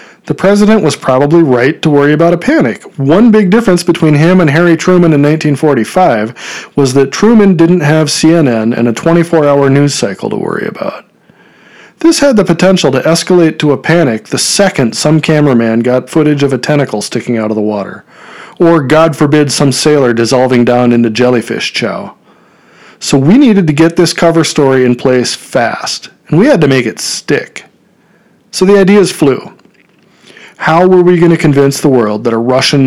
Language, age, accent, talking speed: English, 40-59, American, 185 wpm